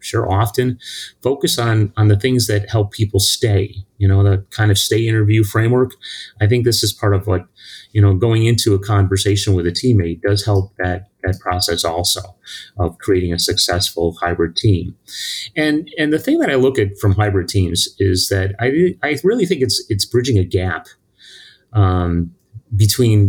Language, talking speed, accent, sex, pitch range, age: English, 185 wpm, American, male, 100-120 Hz, 30-49